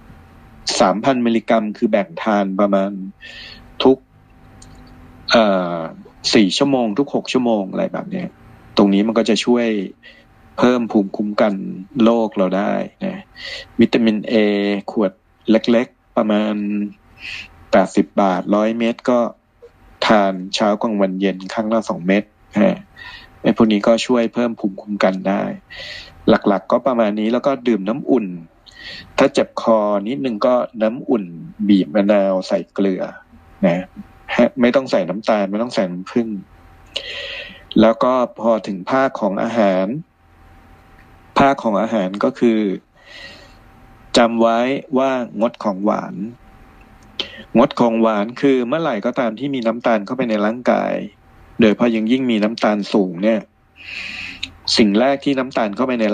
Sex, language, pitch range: male, Thai, 95-120 Hz